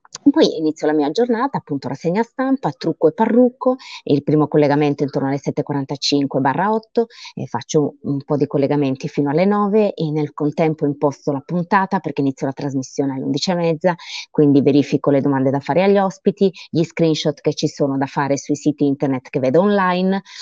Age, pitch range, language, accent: 30-49, 140-170 Hz, Italian, native